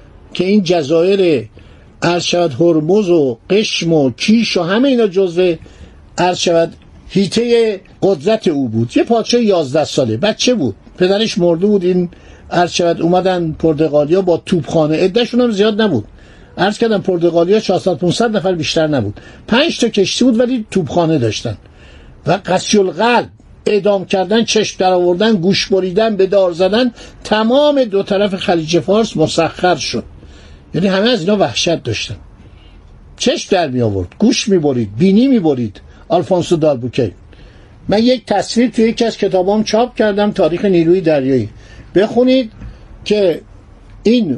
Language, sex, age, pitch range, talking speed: Persian, male, 50-69, 155-215 Hz, 140 wpm